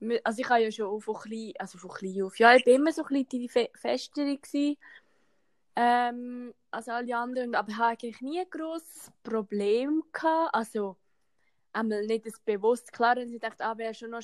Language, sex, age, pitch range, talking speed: German, female, 20-39, 215-240 Hz, 200 wpm